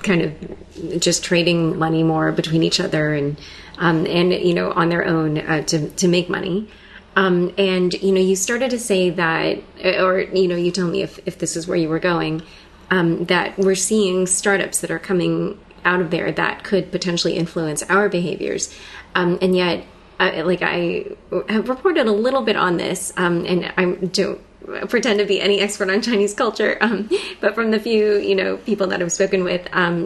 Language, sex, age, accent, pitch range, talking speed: English, female, 30-49, American, 175-200 Hz, 200 wpm